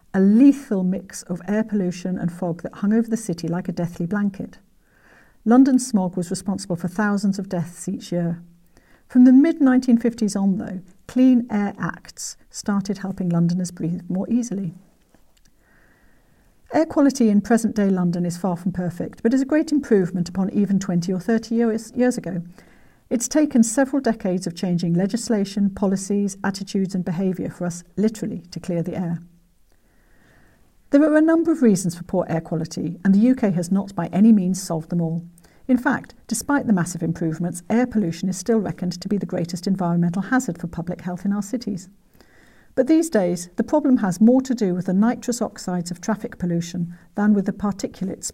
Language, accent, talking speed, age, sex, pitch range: English, British, 180 wpm, 50-69, female, 175-225 Hz